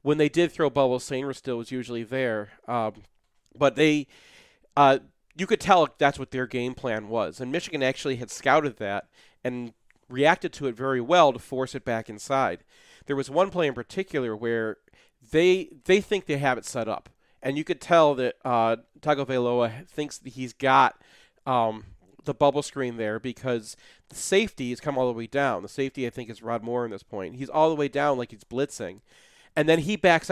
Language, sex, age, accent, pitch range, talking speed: English, male, 40-59, American, 120-150 Hz, 200 wpm